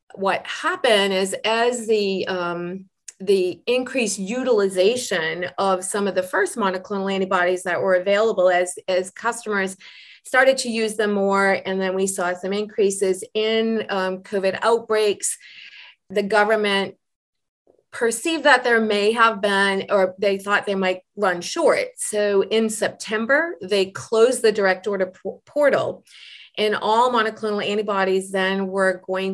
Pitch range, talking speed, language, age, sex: 190-225 Hz, 140 wpm, English, 30-49, female